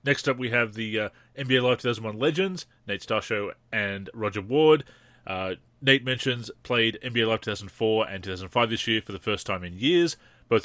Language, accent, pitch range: English, Australian, 100-125 Hz